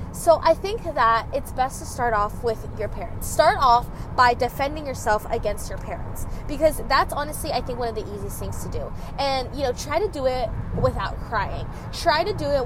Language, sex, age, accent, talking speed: English, female, 20-39, American, 215 wpm